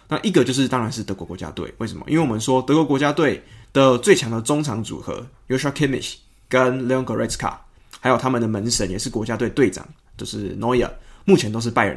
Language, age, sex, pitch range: Chinese, 20-39, male, 110-135 Hz